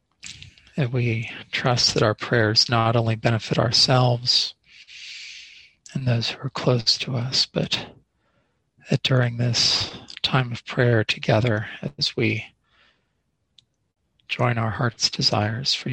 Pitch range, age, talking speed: 115-130 Hz, 40-59, 120 wpm